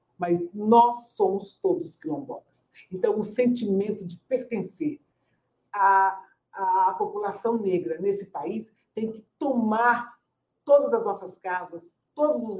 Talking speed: 120 wpm